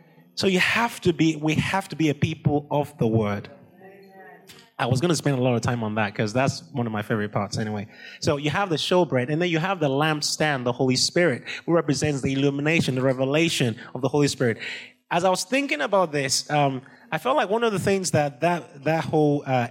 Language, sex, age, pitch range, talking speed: English, male, 20-39, 120-160 Hz, 230 wpm